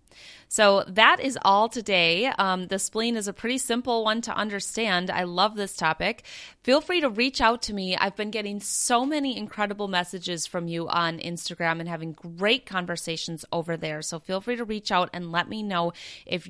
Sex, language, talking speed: female, English, 195 wpm